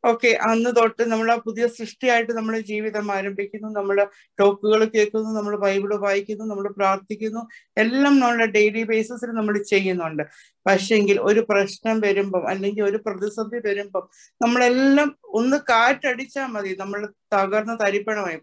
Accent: native